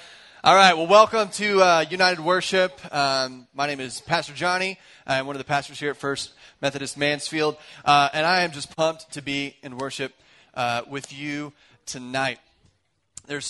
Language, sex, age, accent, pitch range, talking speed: English, male, 30-49, American, 135-175 Hz, 175 wpm